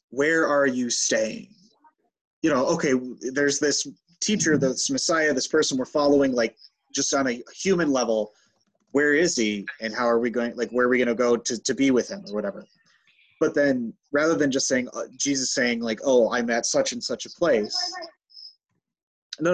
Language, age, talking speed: English, 30-49, 195 wpm